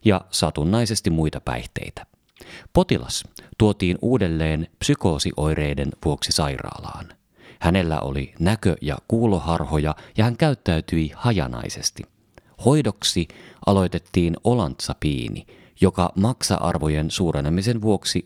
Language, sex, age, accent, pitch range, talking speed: Finnish, male, 30-49, native, 80-115 Hz, 85 wpm